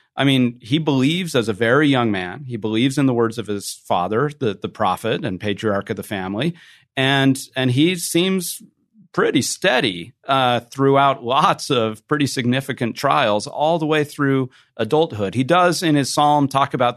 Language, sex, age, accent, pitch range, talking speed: English, male, 40-59, American, 115-145 Hz, 175 wpm